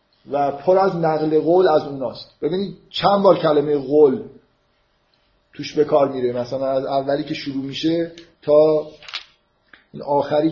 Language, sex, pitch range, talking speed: Persian, male, 135-165 Hz, 145 wpm